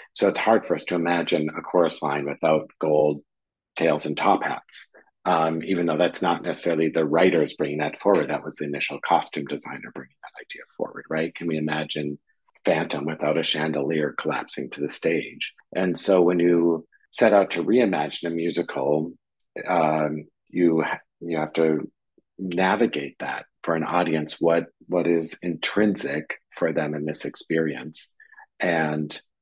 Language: English